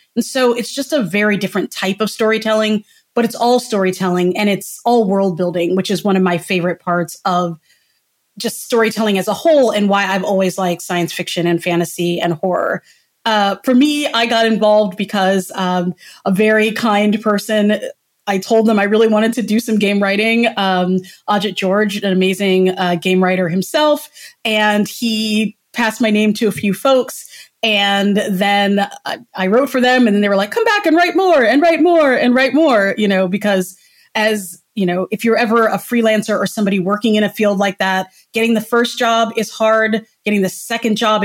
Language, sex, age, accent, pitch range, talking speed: English, female, 30-49, American, 190-225 Hz, 200 wpm